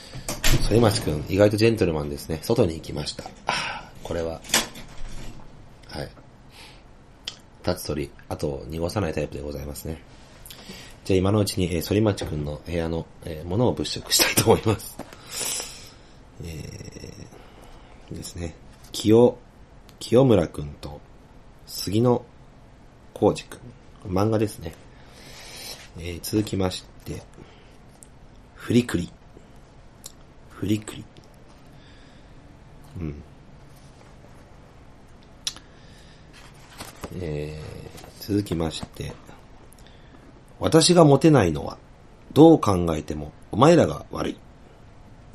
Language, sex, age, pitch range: Japanese, male, 40-59, 80-110 Hz